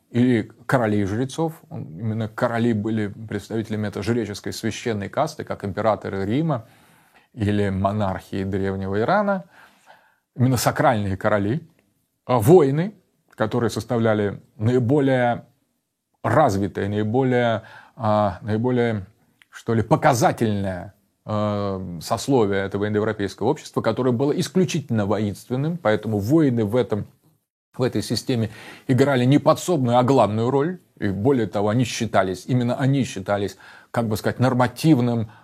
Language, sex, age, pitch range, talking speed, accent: Russian, male, 30-49, 105-140 Hz, 115 wpm, native